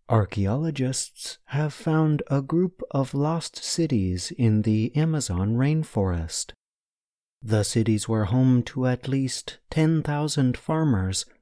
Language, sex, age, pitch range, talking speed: English, male, 30-49, 105-150 Hz, 110 wpm